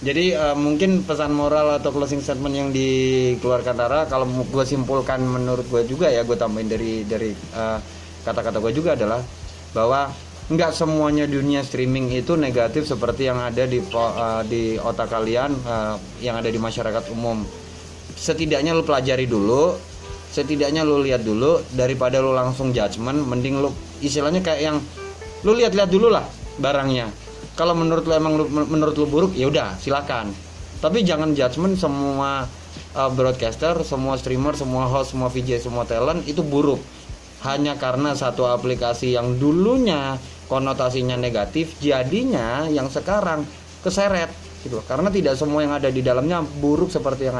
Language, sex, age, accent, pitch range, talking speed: Indonesian, male, 20-39, native, 115-150 Hz, 150 wpm